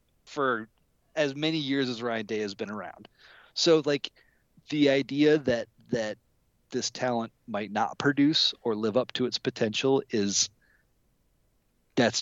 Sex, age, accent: male, 30-49, American